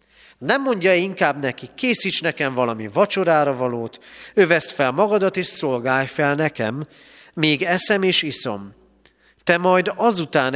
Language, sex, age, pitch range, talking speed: Hungarian, male, 40-59, 125-175 Hz, 130 wpm